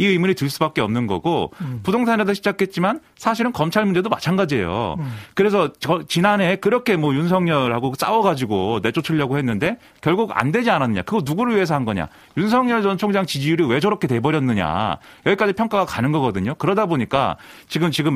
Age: 30-49